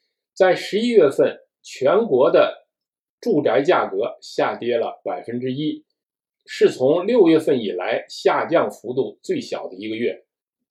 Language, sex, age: Chinese, male, 50-69